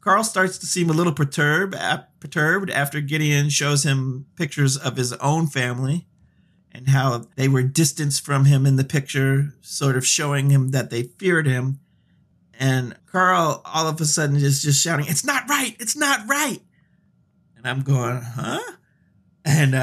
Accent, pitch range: American, 145-210 Hz